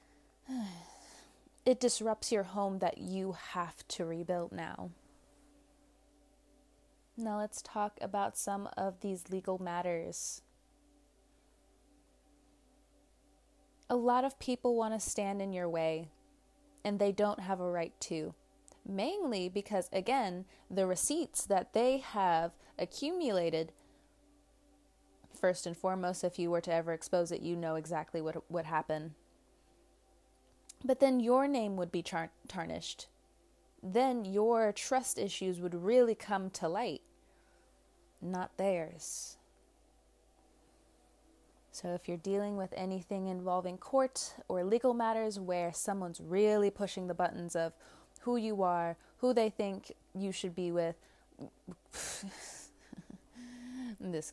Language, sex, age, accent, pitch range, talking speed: English, female, 20-39, American, 170-220 Hz, 120 wpm